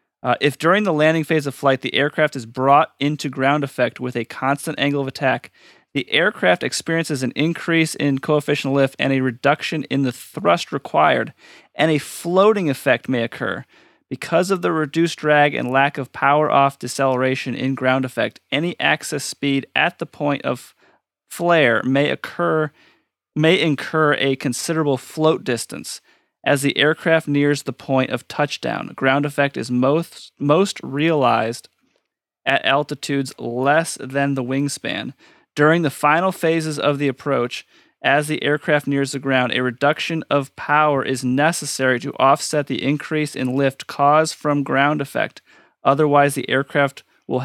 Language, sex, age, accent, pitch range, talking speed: English, male, 30-49, American, 130-155 Hz, 160 wpm